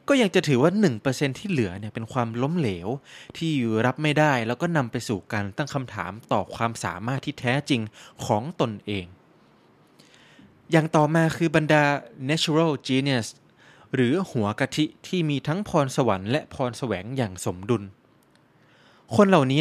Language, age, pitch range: Thai, 20-39, 115-155 Hz